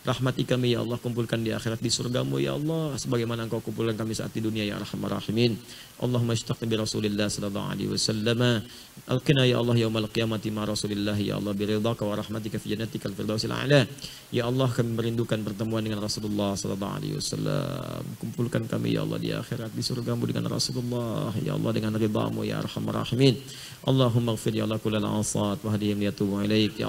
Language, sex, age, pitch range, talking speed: Indonesian, male, 40-59, 105-125 Hz, 175 wpm